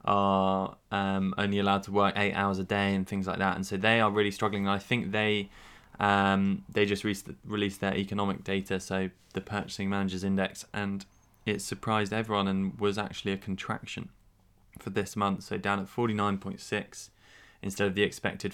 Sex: male